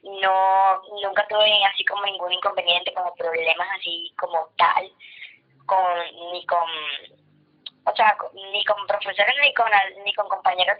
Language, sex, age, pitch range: Spanish, male, 20-39, 180-230 Hz